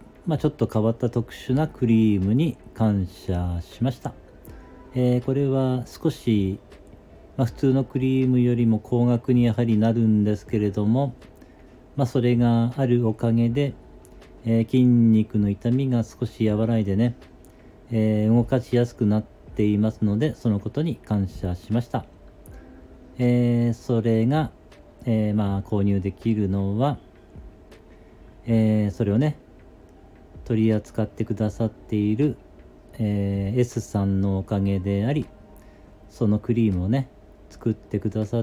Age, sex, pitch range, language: 40-59, male, 100-120 Hz, Japanese